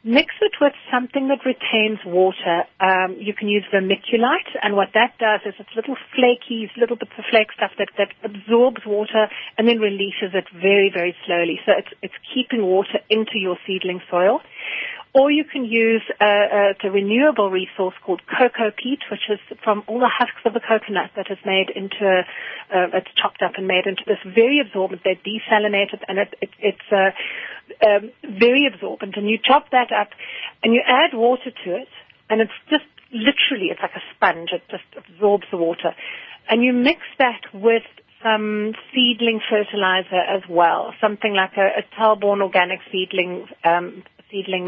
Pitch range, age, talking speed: 195-250 Hz, 40-59, 180 wpm